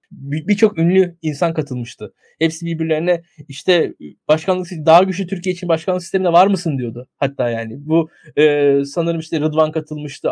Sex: male